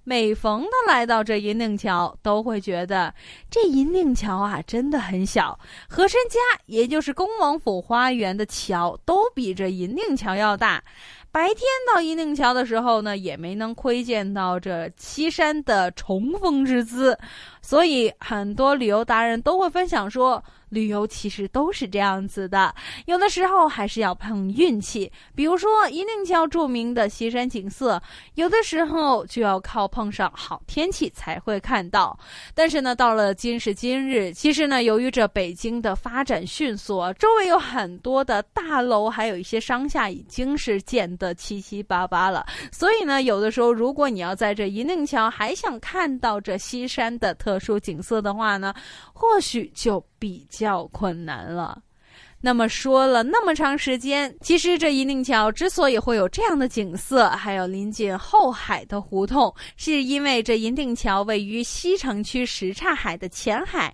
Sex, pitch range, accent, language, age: female, 205-290 Hz, native, Chinese, 20-39